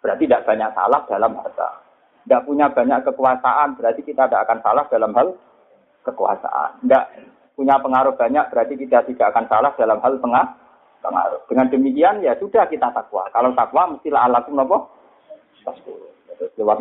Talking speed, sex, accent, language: 155 wpm, male, native, Indonesian